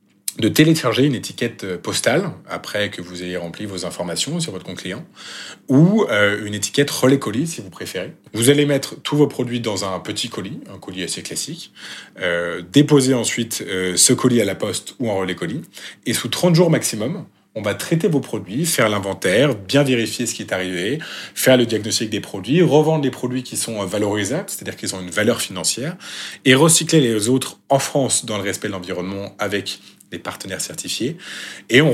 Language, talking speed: French, 190 wpm